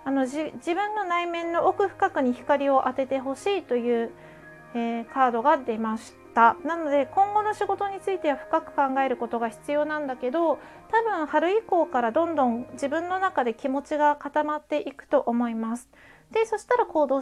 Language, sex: Japanese, female